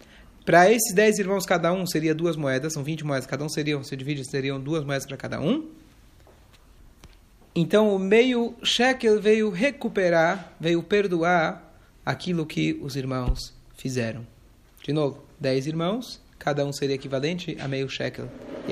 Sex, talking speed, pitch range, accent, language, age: male, 155 wpm, 140-210 Hz, Brazilian, Portuguese, 30-49